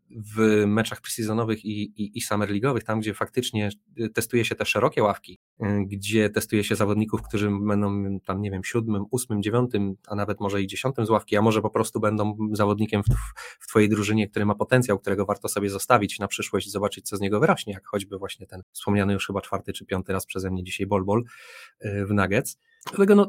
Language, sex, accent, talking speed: Polish, male, native, 205 wpm